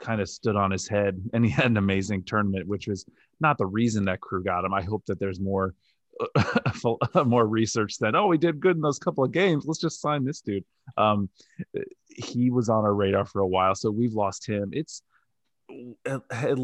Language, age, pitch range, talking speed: English, 20-39, 100-115 Hz, 210 wpm